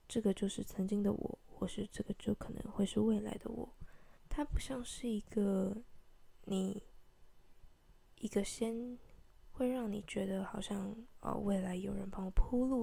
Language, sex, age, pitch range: Chinese, female, 10-29, 195-225 Hz